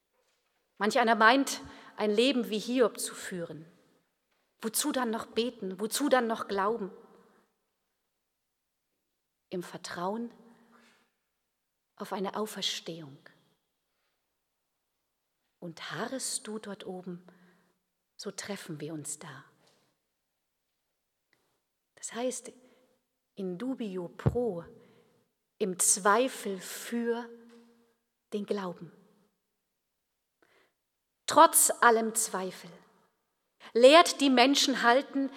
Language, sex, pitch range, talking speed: German, female, 195-245 Hz, 85 wpm